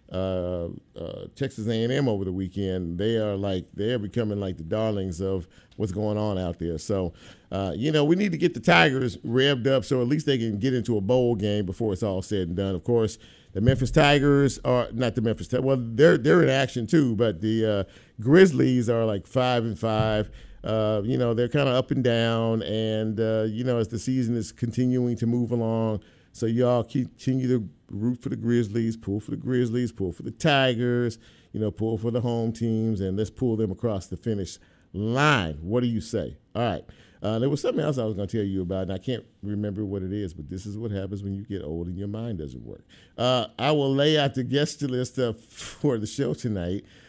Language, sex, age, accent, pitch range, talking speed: English, male, 50-69, American, 105-125 Hz, 225 wpm